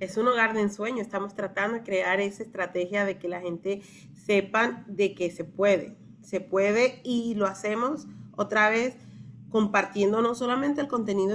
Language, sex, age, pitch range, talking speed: Spanish, female, 30-49, 195-230 Hz, 170 wpm